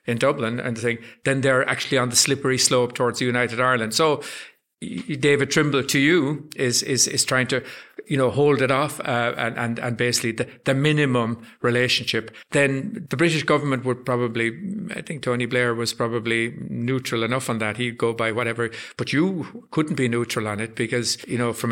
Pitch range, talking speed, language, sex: 120-135 Hz, 195 wpm, English, male